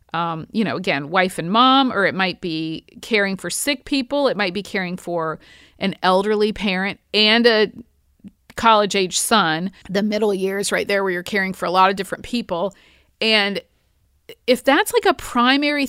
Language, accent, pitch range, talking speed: English, American, 185-230 Hz, 180 wpm